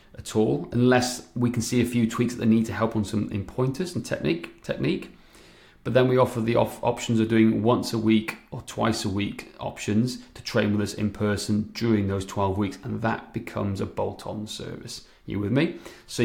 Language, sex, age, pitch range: English, male, 30-49, 105-120 Hz